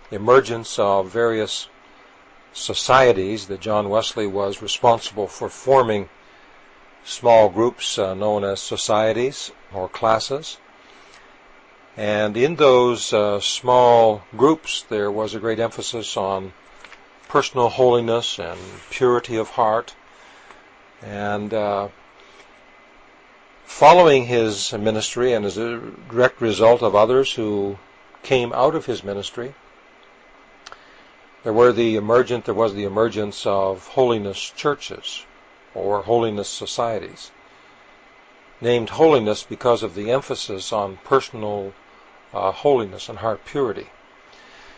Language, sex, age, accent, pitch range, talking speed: English, male, 50-69, American, 100-120 Hz, 110 wpm